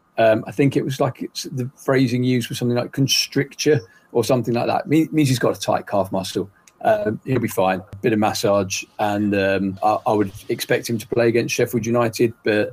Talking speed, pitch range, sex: 220 wpm, 105-125 Hz, male